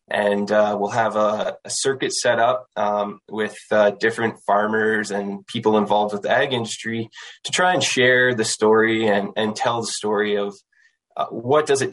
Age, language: 20-39, English